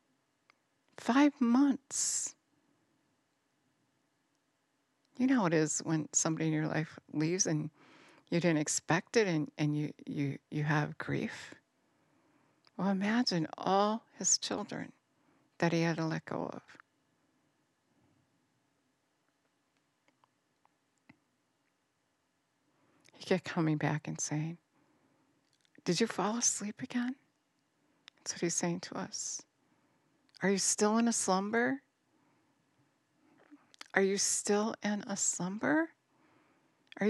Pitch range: 175-230 Hz